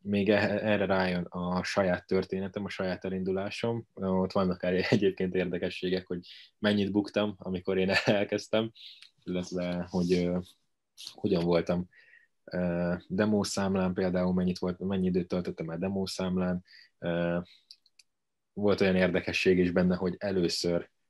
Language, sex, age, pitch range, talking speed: Hungarian, male, 20-39, 90-100 Hz, 120 wpm